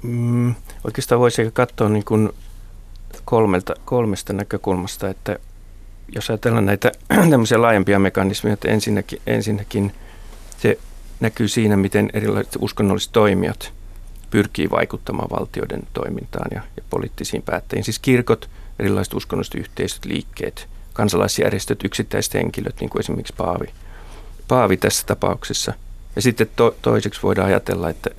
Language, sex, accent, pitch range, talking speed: Finnish, male, native, 90-110 Hz, 115 wpm